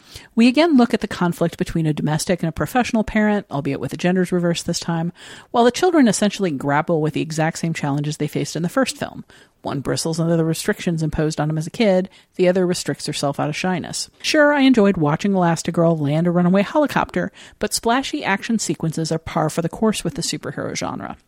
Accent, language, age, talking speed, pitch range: American, English, 40-59, 215 wpm, 155-220 Hz